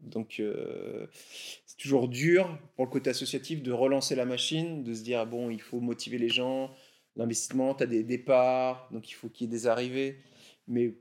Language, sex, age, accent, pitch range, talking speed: French, male, 30-49, French, 125-155 Hz, 200 wpm